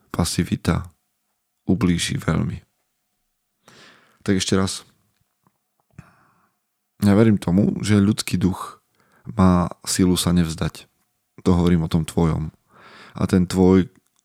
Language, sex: Slovak, male